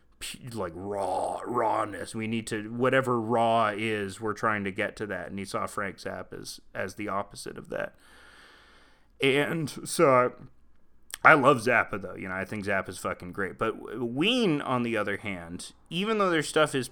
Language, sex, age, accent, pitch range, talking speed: English, male, 30-49, American, 110-145 Hz, 185 wpm